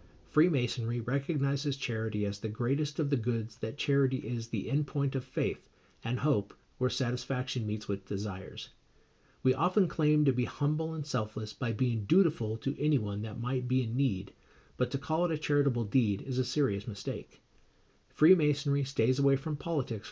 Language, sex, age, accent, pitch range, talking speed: English, male, 50-69, American, 115-140 Hz, 175 wpm